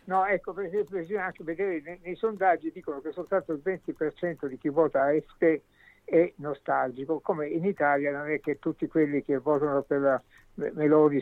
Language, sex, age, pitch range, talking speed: Italian, male, 60-79, 140-170 Hz, 170 wpm